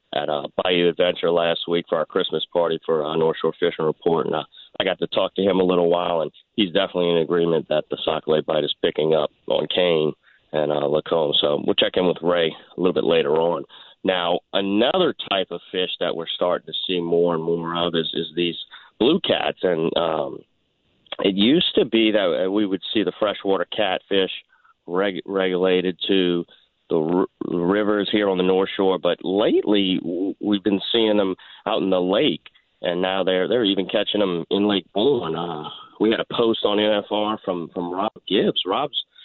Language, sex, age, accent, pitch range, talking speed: English, male, 40-59, American, 85-105 Hz, 200 wpm